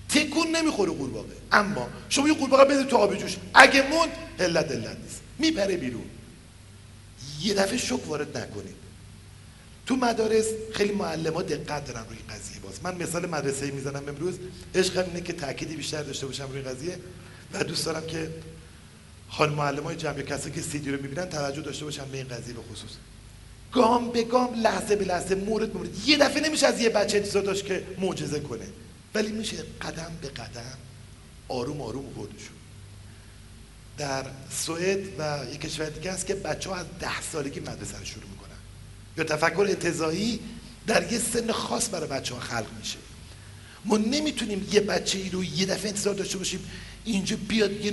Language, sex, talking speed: Persian, male, 170 wpm